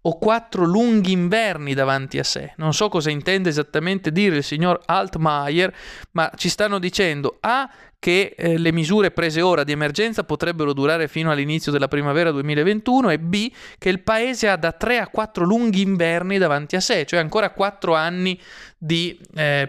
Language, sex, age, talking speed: Italian, male, 20-39, 175 wpm